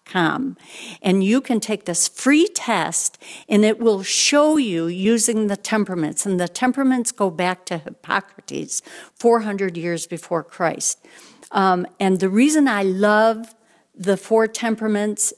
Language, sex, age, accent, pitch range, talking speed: English, female, 60-79, American, 175-220 Hz, 135 wpm